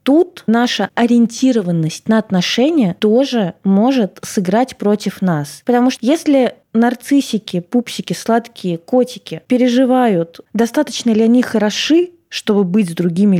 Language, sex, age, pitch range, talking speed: Russian, female, 20-39, 200-250 Hz, 115 wpm